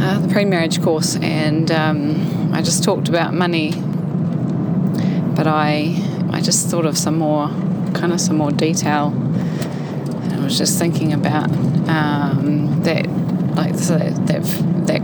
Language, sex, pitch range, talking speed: English, female, 160-180 Hz, 150 wpm